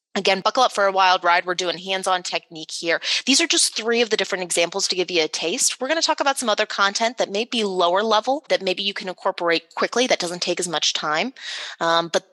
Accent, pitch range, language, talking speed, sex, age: American, 175-220 Hz, English, 255 wpm, female, 20-39